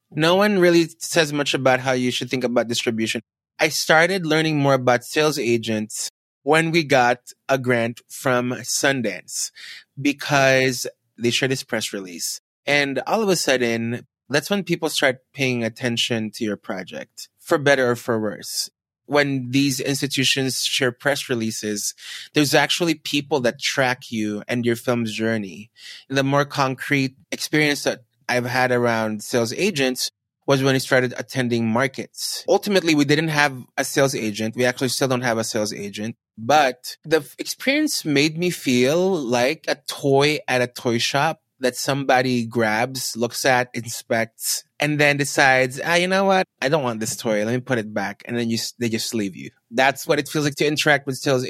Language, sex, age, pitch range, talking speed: English, male, 20-39, 115-145 Hz, 175 wpm